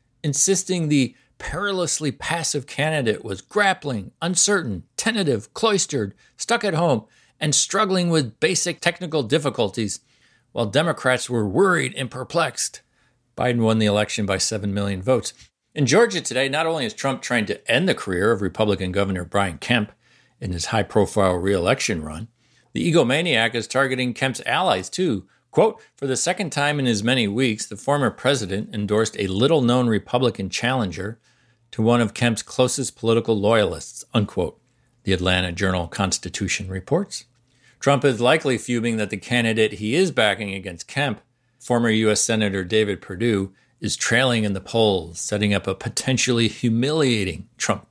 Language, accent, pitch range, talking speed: English, American, 105-135 Hz, 150 wpm